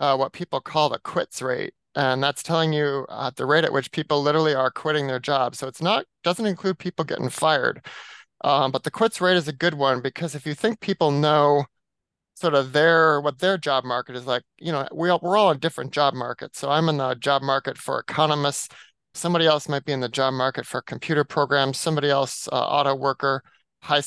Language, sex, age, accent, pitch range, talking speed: English, male, 30-49, American, 135-165 Hz, 220 wpm